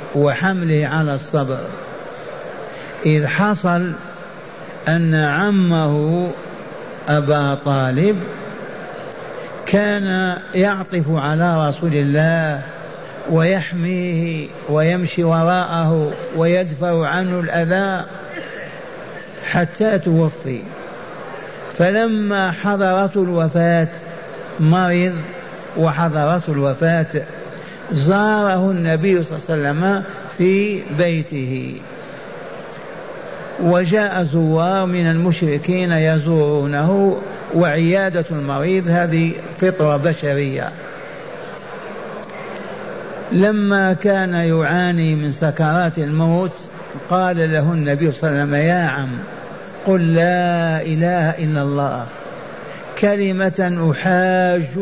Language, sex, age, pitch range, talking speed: Arabic, male, 50-69, 160-185 Hz, 75 wpm